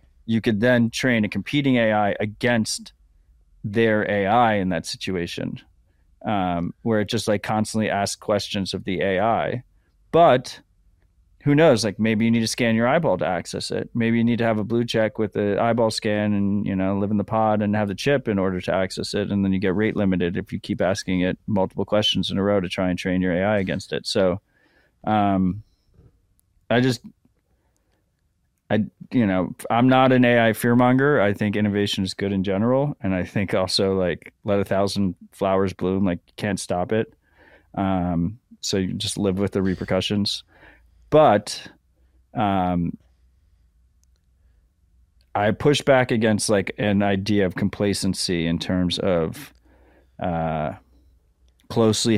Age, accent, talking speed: 30-49, American, 170 wpm